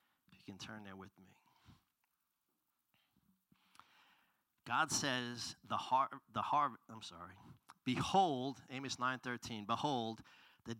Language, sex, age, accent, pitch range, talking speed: English, male, 40-59, American, 110-135 Hz, 100 wpm